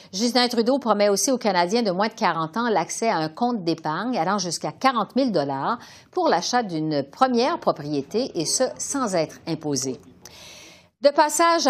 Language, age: French, 50-69